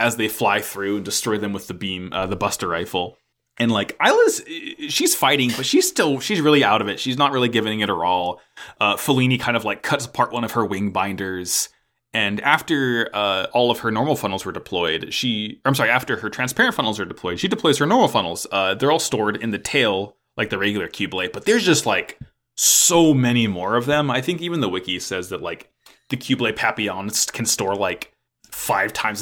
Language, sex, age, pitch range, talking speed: English, male, 20-39, 100-145 Hz, 220 wpm